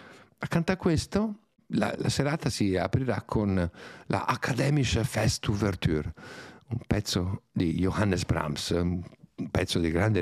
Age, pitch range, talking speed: 50-69, 95-140 Hz, 125 wpm